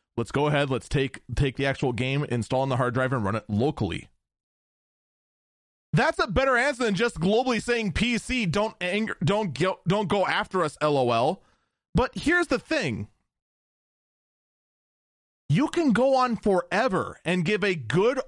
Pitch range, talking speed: 140-205 Hz, 160 wpm